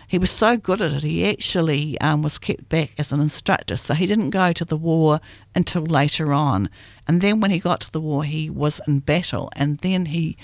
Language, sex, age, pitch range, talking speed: English, female, 60-79, 130-170 Hz, 230 wpm